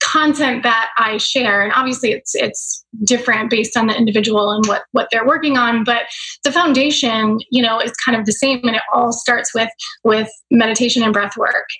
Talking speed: 200 wpm